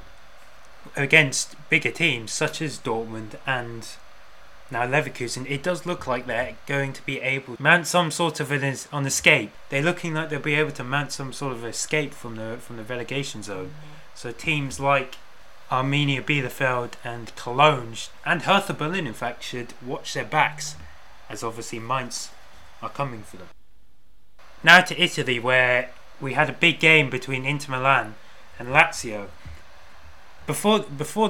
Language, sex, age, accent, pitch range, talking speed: English, male, 20-39, British, 115-150 Hz, 155 wpm